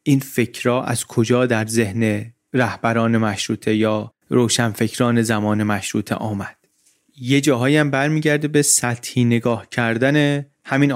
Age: 30-49